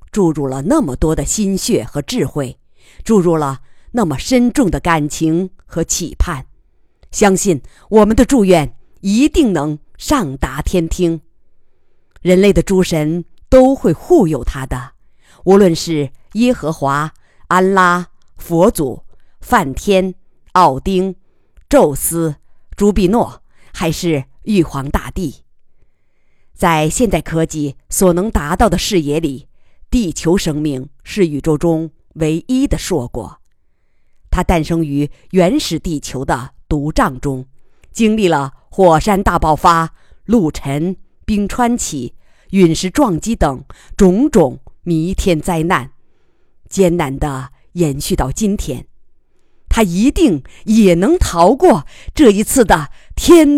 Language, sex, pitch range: Chinese, female, 150-205 Hz